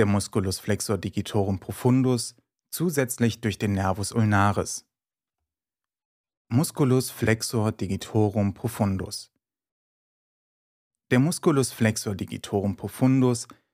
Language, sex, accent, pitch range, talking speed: German, male, German, 105-125 Hz, 85 wpm